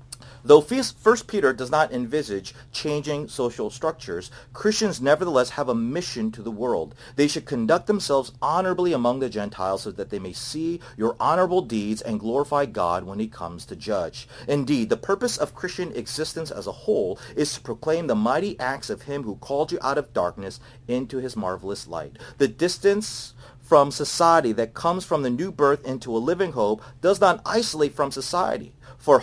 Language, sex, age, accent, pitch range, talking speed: English, male, 40-59, American, 120-160 Hz, 180 wpm